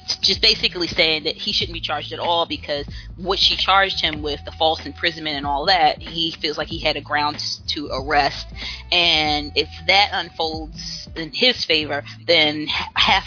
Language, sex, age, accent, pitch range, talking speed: English, female, 20-39, American, 145-170 Hz, 180 wpm